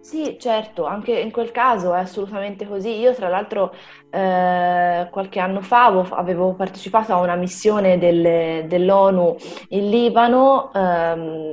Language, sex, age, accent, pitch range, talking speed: Italian, female, 20-39, native, 175-215 Hz, 140 wpm